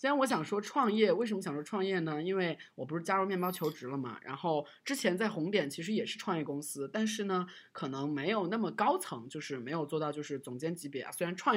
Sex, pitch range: male, 145-185 Hz